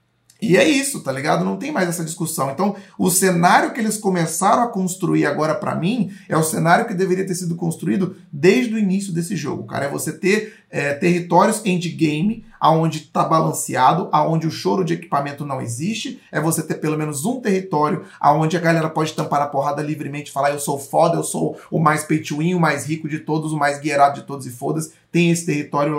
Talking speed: 205 wpm